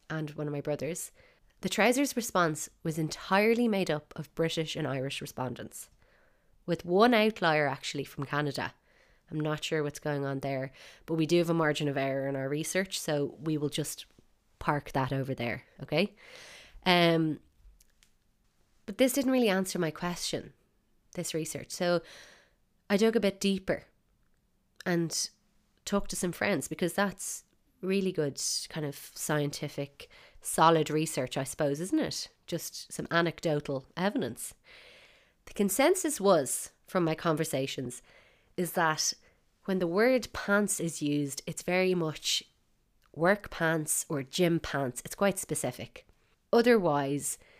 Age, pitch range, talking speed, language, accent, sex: 20-39, 150-195 Hz, 145 wpm, English, Irish, female